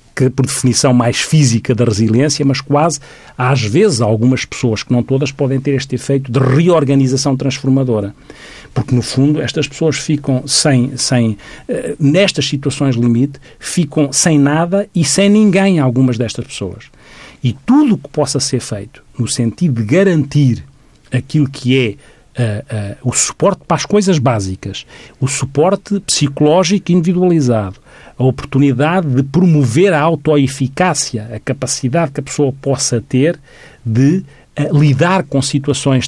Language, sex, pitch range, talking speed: Portuguese, male, 130-155 Hz, 145 wpm